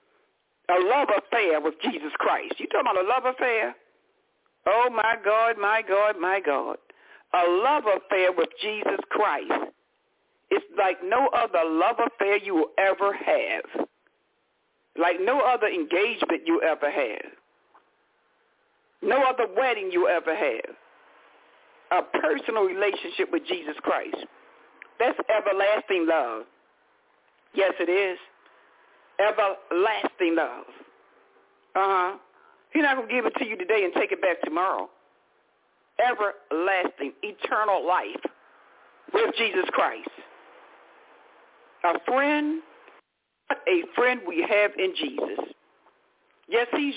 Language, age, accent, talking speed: English, 60-79, American, 120 wpm